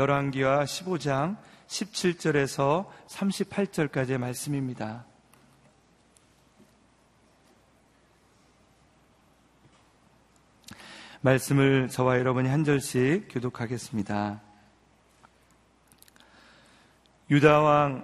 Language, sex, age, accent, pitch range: Korean, male, 40-59, native, 125-140 Hz